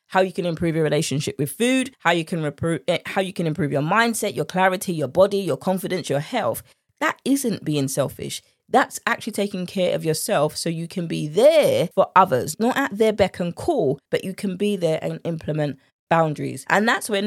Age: 20-39